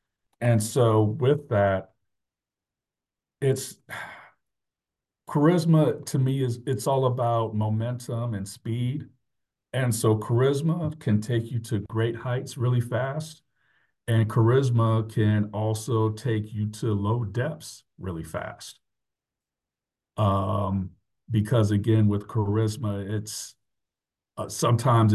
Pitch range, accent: 105-125 Hz, American